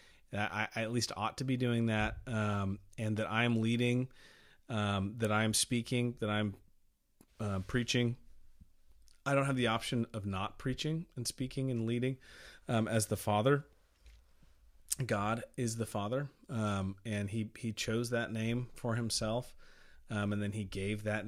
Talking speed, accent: 160 wpm, American